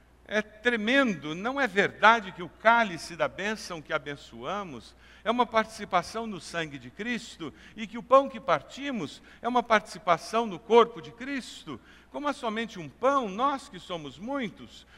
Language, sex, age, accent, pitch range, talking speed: Portuguese, male, 60-79, Brazilian, 160-240 Hz, 165 wpm